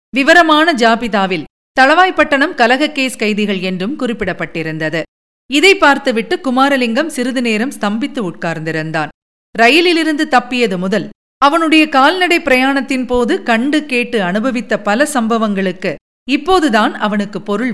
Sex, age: female, 50-69